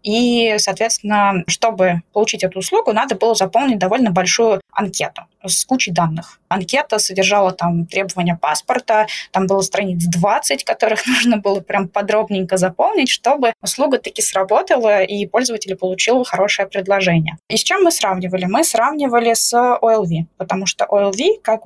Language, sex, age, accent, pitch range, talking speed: Russian, female, 20-39, native, 185-225 Hz, 145 wpm